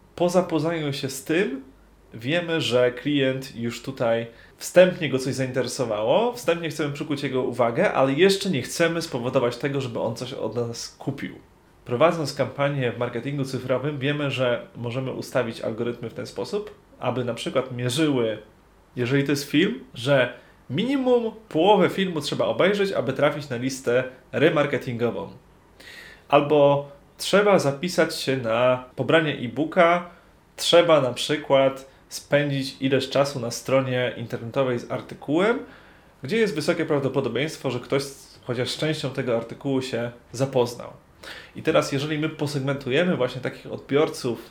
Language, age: Polish, 30-49